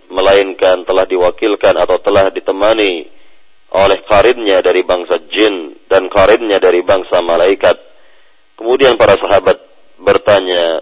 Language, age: Indonesian, 40-59